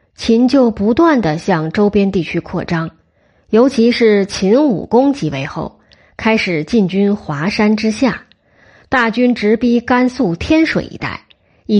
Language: Chinese